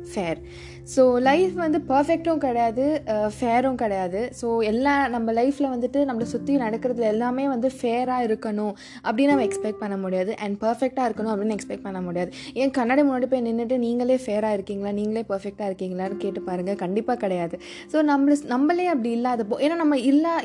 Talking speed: 160 wpm